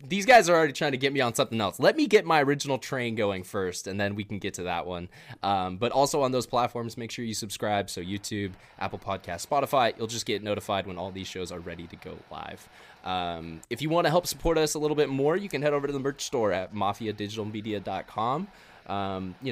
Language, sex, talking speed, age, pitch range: English, male, 240 wpm, 10-29, 95-120 Hz